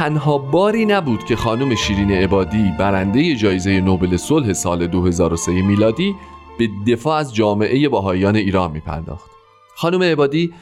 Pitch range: 95-145 Hz